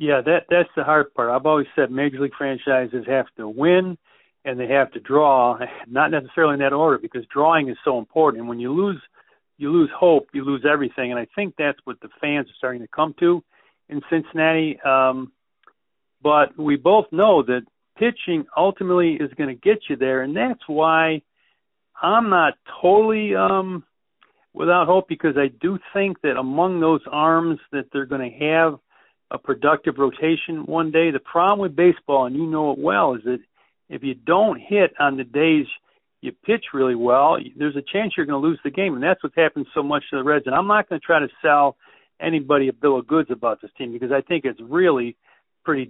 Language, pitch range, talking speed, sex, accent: English, 135-165 Hz, 205 wpm, male, American